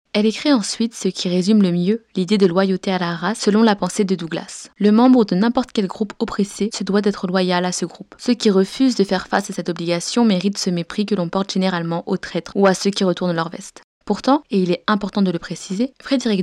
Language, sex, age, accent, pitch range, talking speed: French, female, 20-39, French, 180-215 Hz, 245 wpm